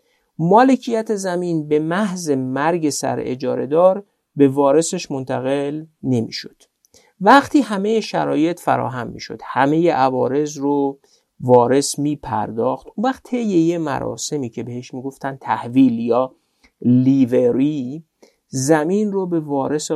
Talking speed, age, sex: 110 wpm, 50-69, male